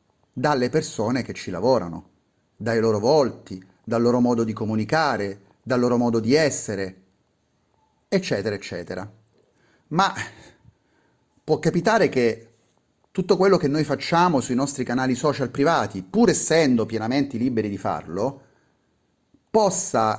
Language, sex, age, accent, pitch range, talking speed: Italian, male, 30-49, native, 115-175 Hz, 120 wpm